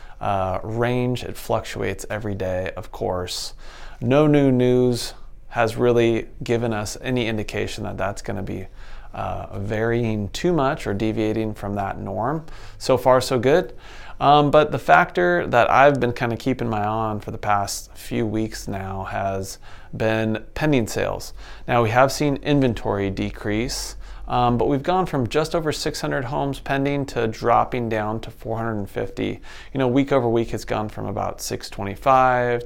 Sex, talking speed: male, 160 wpm